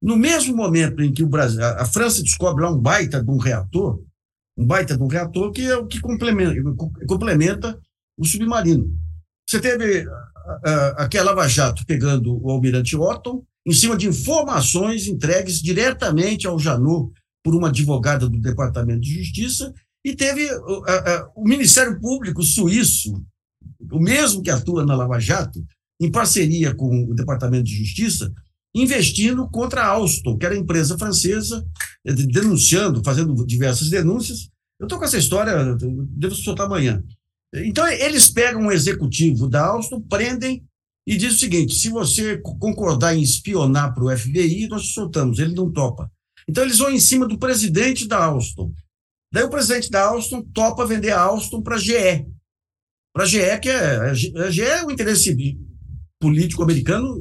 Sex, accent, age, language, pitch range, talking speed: male, Brazilian, 60-79, Portuguese, 130-215 Hz, 165 wpm